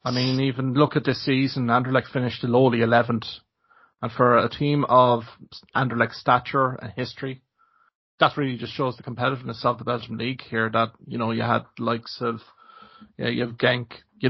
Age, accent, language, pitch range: 30-49, Irish, English, 120-135 Hz